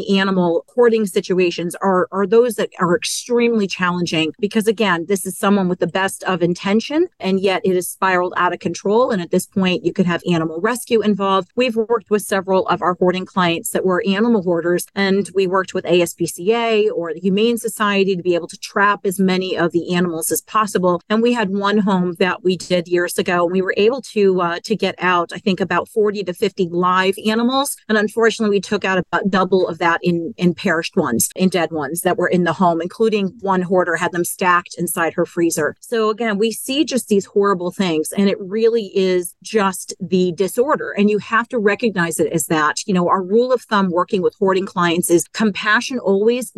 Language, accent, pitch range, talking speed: English, American, 175-215 Hz, 210 wpm